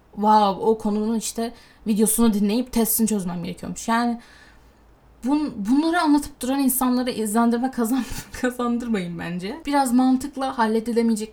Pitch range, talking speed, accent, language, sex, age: 195-235 Hz, 120 wpm, native, Turkish, female, 10-29